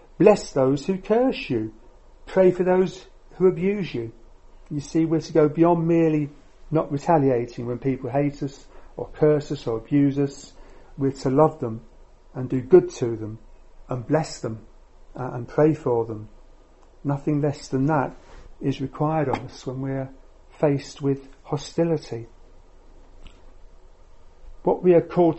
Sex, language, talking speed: male, English, 150 wpm